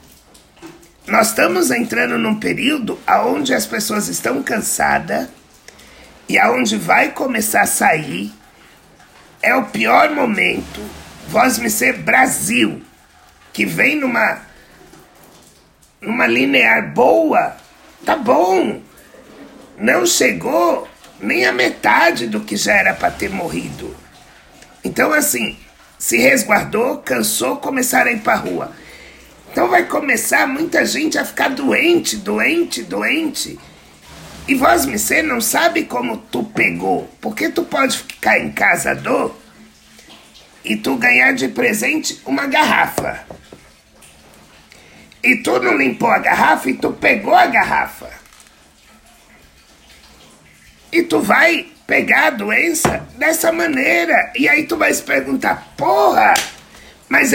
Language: Portuguese